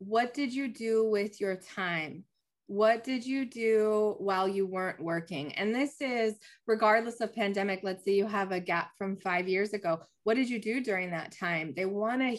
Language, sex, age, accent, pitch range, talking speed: English, female, 20-39, American, 190-225 Hz, 195 wpm